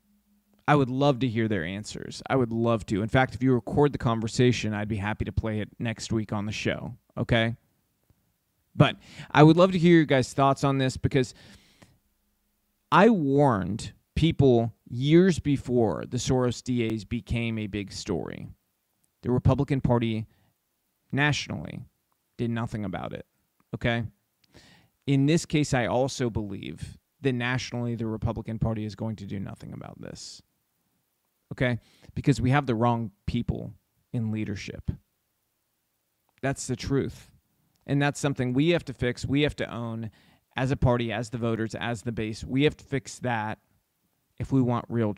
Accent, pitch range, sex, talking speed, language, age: American, 110-135 Hz, male, 160 wpm, English, 30-49